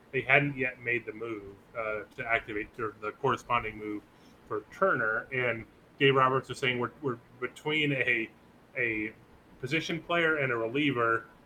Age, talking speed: 30-49, 150 wpm